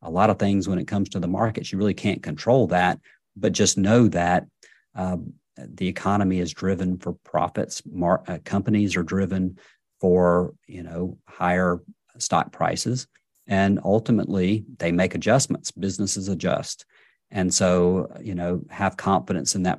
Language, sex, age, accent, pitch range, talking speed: English, male, 50-69, American, 90-105 Hz, 160 wpm